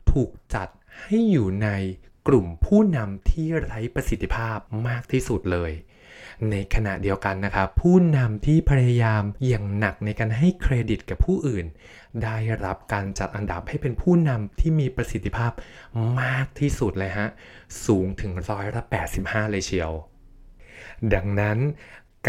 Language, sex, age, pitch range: Thai, male, 20-39, 100-130 Hz